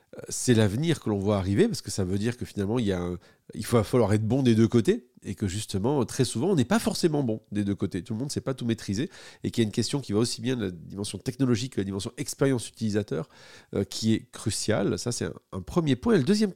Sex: male